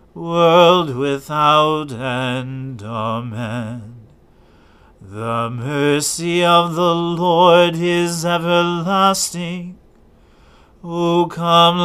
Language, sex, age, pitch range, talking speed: English, male, 40-59, 170-180 Hz, 65 wpm